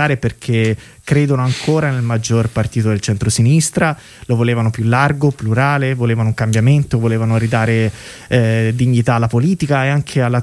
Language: Italian